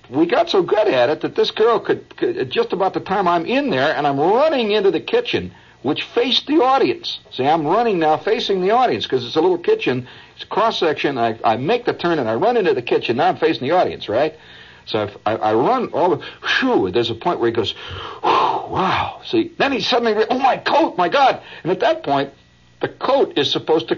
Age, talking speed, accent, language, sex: 60-79, 230 wpm, American, English, male